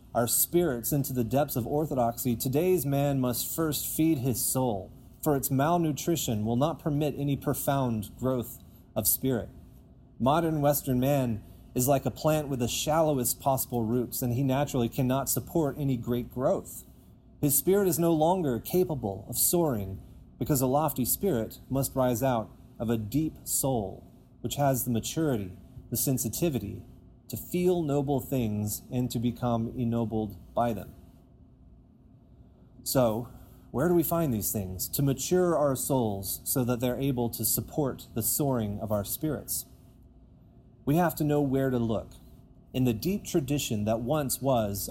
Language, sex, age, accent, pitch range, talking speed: English, male, 30-49, American, 115-145 Hz, 155 wpm